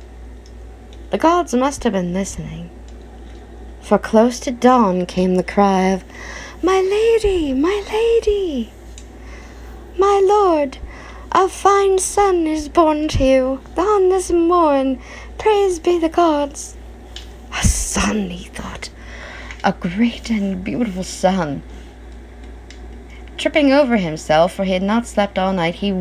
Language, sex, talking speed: English, female, 125 wpm